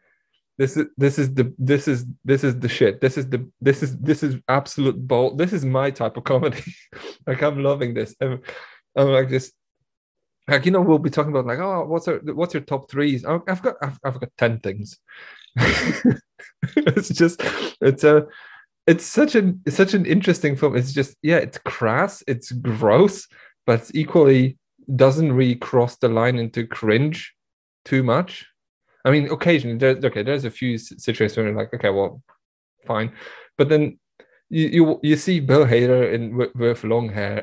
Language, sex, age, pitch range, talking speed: English, male, 20-39, 125-155 Hz, 185 wpm